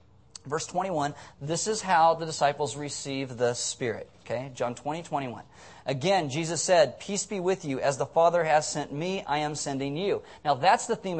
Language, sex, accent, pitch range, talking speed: English, male, American, 150-195 Hz, 190 wpm